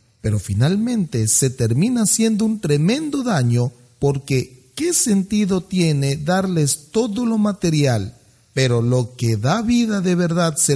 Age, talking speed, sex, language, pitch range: 40-59, 135 wpm, male, Spanish, 135-190 Hz